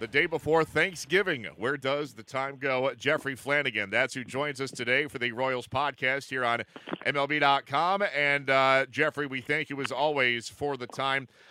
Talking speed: 175 wpm